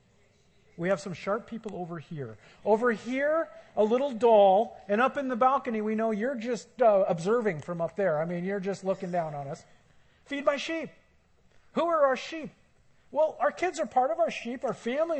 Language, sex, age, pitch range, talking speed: English, male, 50-69, 190-265 Hz, 200 wpm